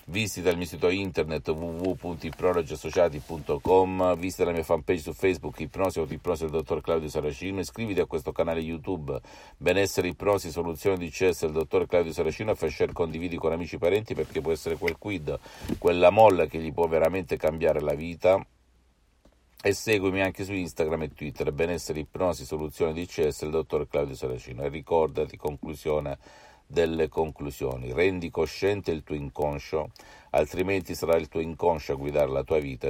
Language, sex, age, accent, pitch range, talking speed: Italian, male, 50-69, native, 75-95 Hz, 165 wpm